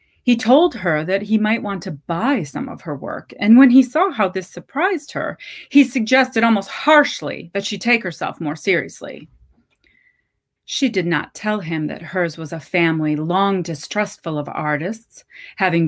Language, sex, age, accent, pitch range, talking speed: English, female, 30-49, American, 160-220 Hz, 175 wpm